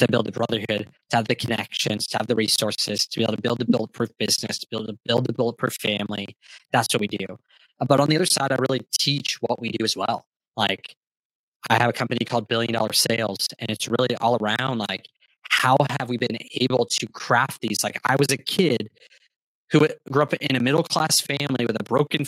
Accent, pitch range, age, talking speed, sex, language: American, 115-145 Hz, 20-39, 225 wpm, male, English